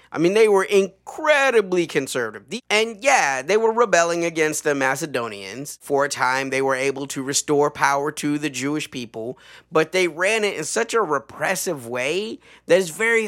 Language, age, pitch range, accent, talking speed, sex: English, 30-49, 140-195 Hz, American, 175 wpm, male